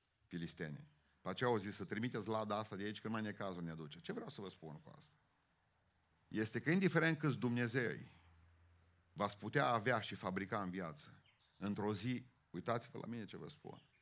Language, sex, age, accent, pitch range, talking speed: Romanian, male, 40-59, native, 95-130 Hz, 195 wpm